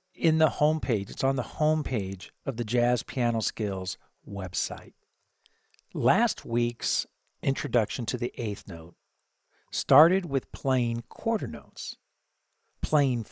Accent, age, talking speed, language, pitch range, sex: American, 50-69, 120 wpm, English, 115-150 Hz, male